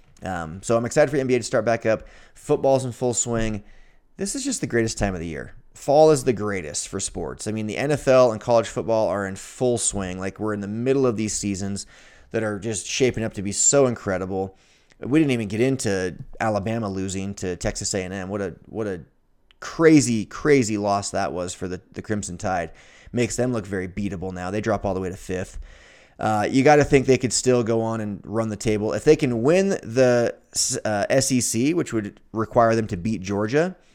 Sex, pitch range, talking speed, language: male, 100-120 Hz, 215 wpm, English